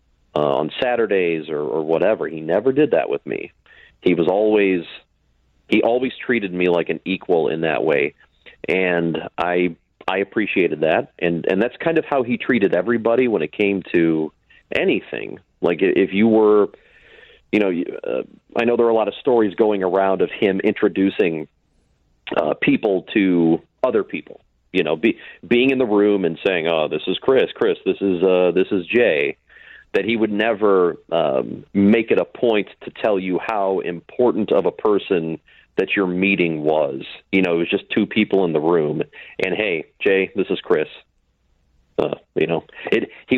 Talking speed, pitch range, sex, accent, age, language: 180 wpm, 85-120 Hz, male, American, 40-59, English